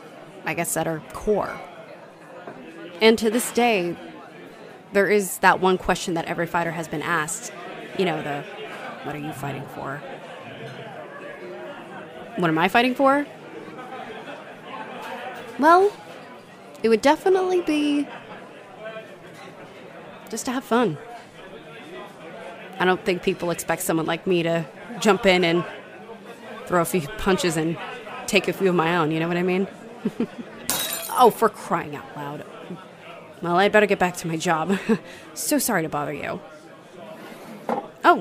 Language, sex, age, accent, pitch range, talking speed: English, female, 20-39, American, 175-235 Hz, 140 wpm